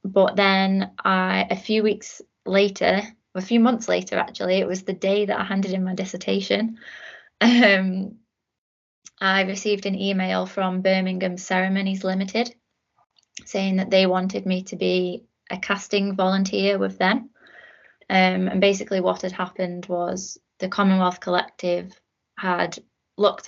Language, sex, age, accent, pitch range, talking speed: English, female, 20-39, British, 180-200 Hz, 140 wpm